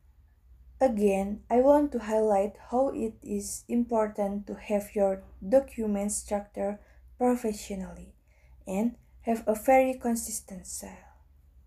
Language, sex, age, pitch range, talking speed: English, female, 20-39, 190-235 Hz, 110 wpm